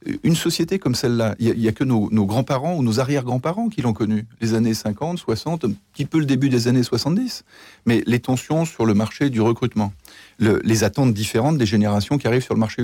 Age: 40-59